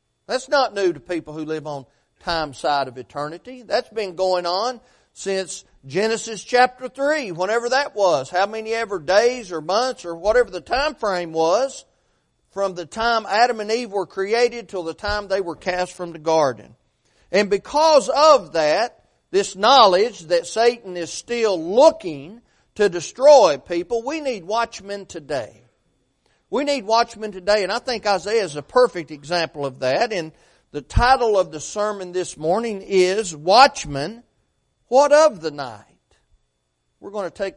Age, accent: 40-59, American